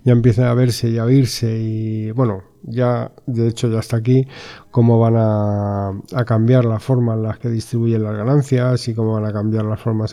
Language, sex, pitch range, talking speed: Spanish, male, 110-125 Hz, 205 wpm